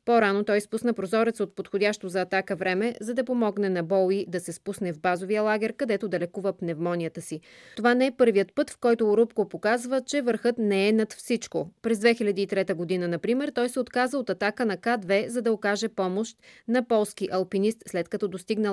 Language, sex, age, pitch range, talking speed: Bulgarian, female, 20-39, 185-225 Hz, 195 wpm